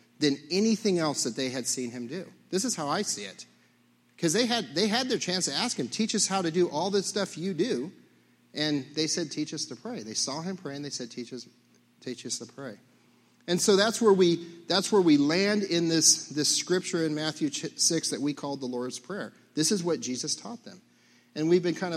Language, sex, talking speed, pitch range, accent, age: English, male, 240 wpm, 125-175 Hz, American, 40-59